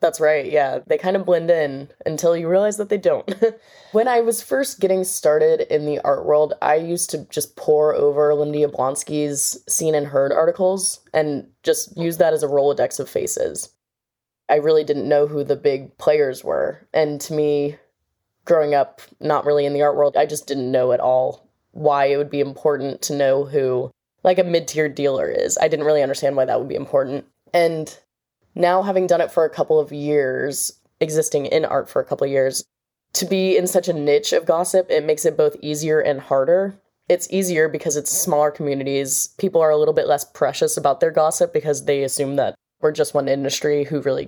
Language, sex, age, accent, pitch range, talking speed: English, female, 20-39, American, 145-190 Hz, 205 wpm